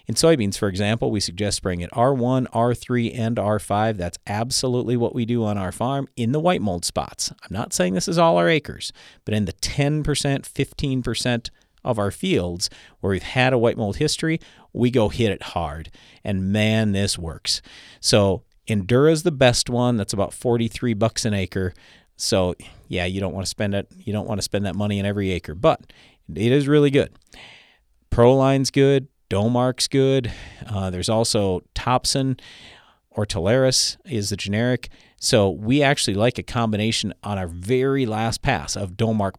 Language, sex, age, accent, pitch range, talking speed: English, male, 40-59, American, 100-130 Hz, 180 wpm